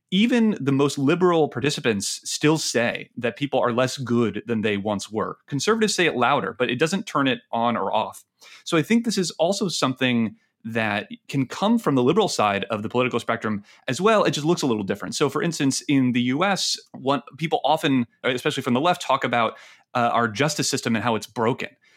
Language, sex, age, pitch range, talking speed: English, male, 30-49, 120-165 Hz, 210 wpm